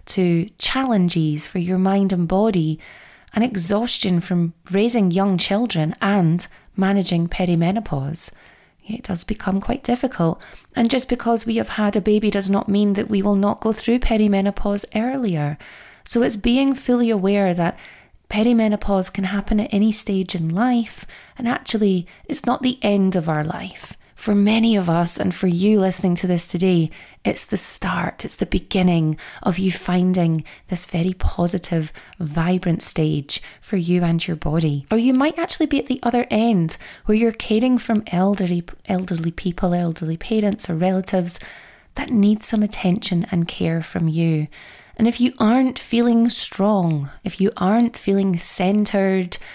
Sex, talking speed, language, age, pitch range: female, 160 wpm, English, 30-49, 175-220 Hz